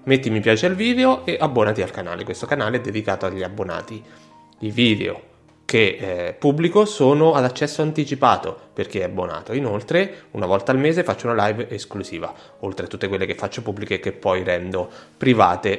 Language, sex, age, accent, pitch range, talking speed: Italian, male, 20-39, native, 105-155 Hz, 180 wpm